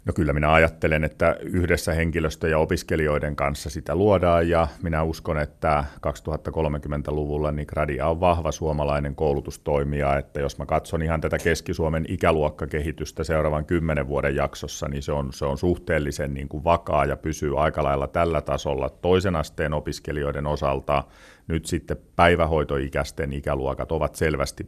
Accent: native